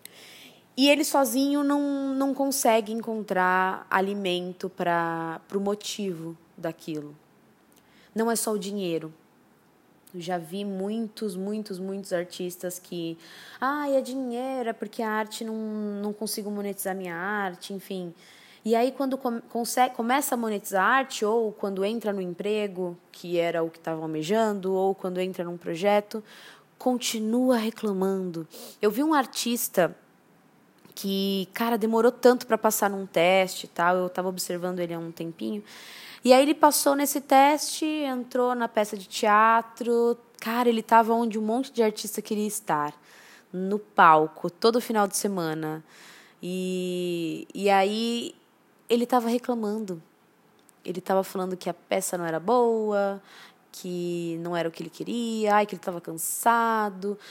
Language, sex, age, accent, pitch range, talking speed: Portuguese, female, 20-39, Brazilian, 180-235 Hz, 145 wpm